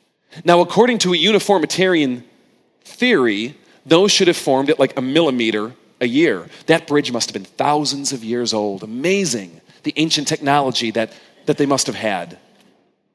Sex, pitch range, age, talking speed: male, 125-180 Hz, 40-59, 160 wpm